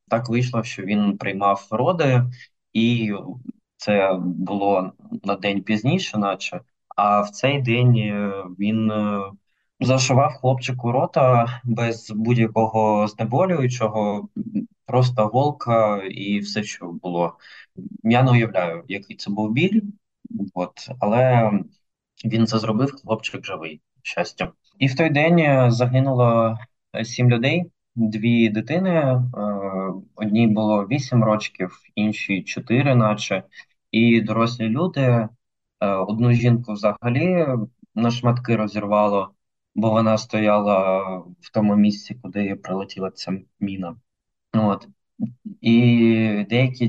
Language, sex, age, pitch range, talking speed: Ukrainian, male, 20-39, 100-125 Hz, 105 wpm